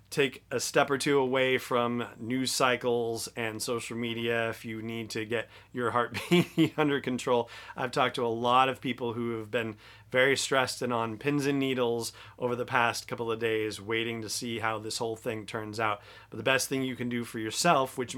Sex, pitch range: male, 110-130 Hz